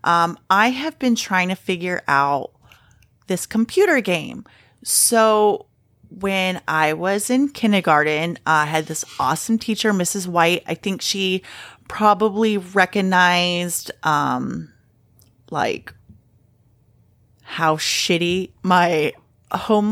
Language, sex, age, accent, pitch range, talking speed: English, female, 30-49, American, 160-225 Hz, 110 wpm